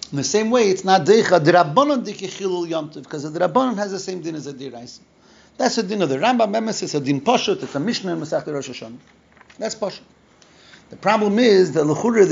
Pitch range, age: 135-185 Hz, 40-59